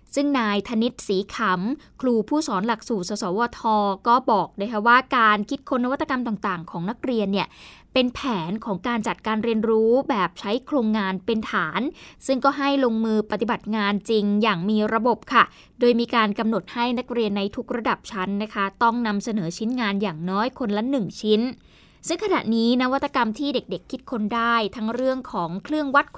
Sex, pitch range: female, 210-265 Hz